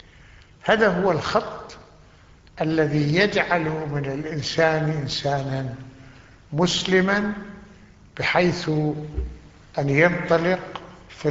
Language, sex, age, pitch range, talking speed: Arabic, male, 60-79, 135-160 Hz, 70 wpm